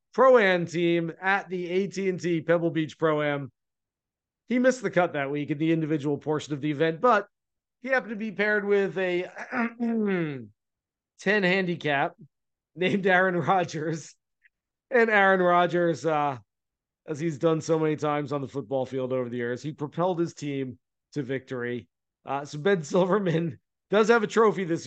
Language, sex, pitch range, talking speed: English, male, 150-190 Hz, 155 wpm